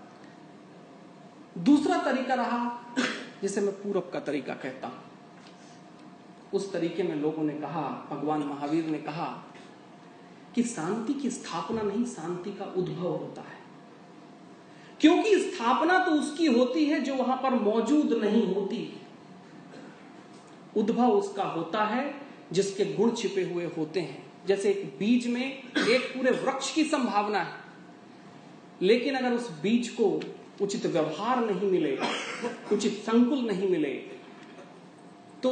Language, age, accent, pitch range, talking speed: Hindi, 40-59, native, 195-255 Hz, 130 wpm